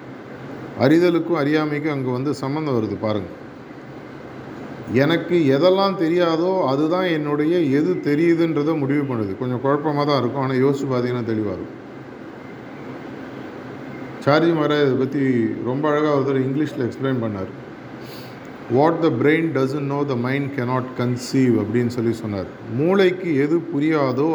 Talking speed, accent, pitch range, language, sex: 120 wpm, native, 125-155 Hz, Tamil, male